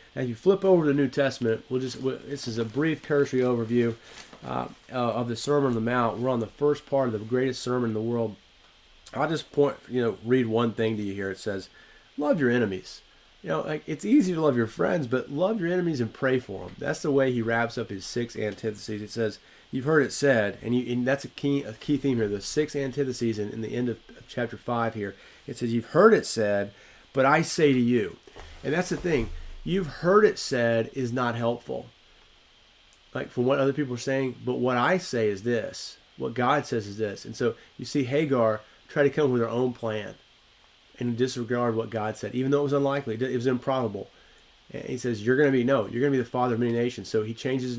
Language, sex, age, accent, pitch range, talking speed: English, male, 30-49, American, 110-135 Hz, 240 wpm